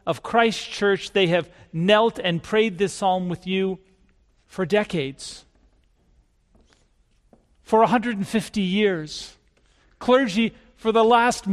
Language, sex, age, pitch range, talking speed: English, male, 40-59, 165-220 Hz, 110 wpm